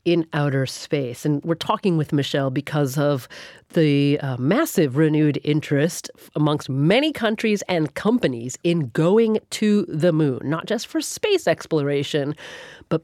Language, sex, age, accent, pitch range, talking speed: English, female, 40-59, American, 140-175 Hz, 145 wpm